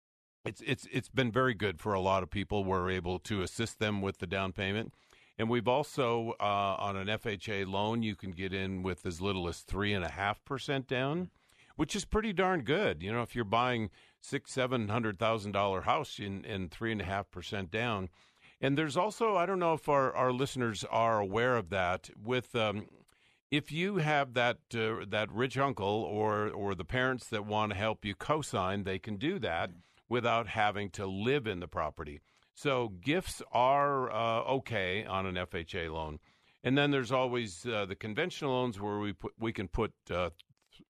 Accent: American